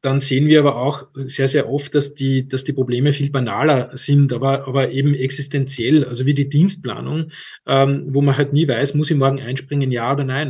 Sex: male